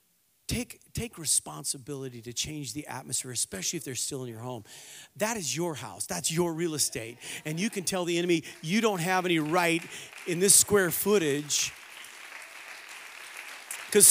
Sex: male